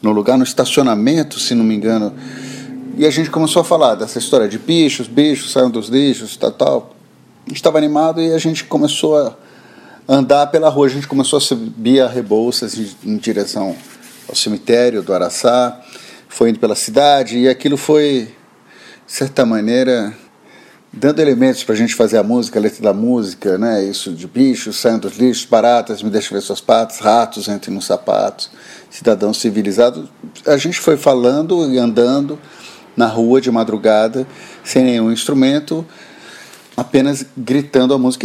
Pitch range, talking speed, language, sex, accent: 115-145 Hz, 170 wpm, Portuguese, male, Brazilian